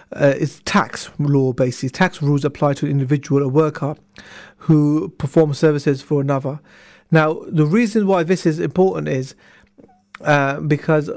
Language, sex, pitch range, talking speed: English, male, 140-170 Hz, 150 wpm